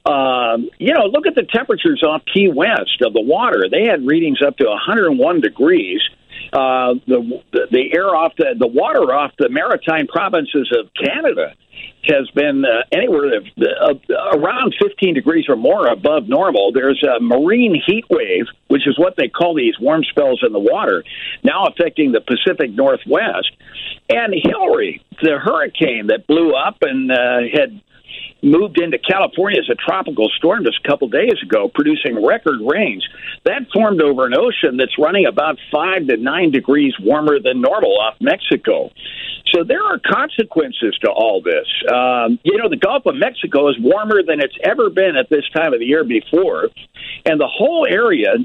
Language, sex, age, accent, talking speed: English, male, 60-79, American, 175 wpm